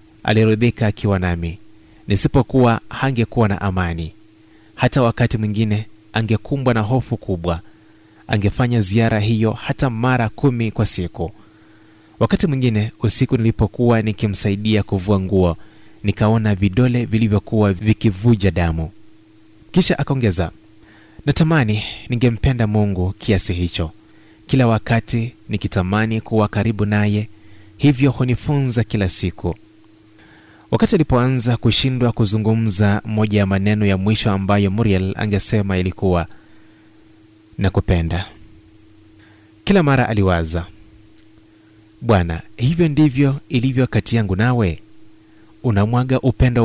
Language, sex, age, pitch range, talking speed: Swahili, male, 30-49, 105-120 Hz, 100 wpm